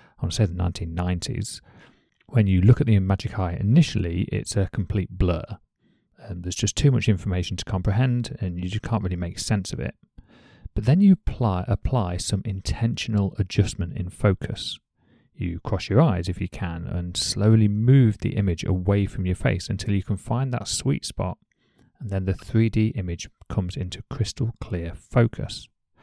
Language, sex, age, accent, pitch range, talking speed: English, male, 40-59, British, 90-120 Hz, 175 wpm